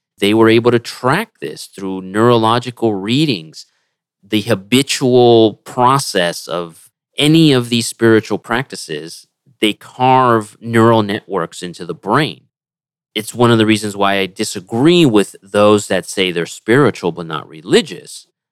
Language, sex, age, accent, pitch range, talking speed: English, male, 30-49, American, 90-120 Hz, 135 wpm